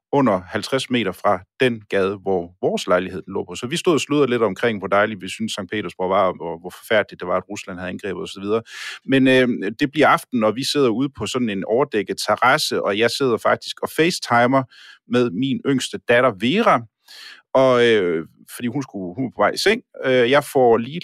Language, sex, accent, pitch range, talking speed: Danish, male, native, 100-130 Hz, 215 wpm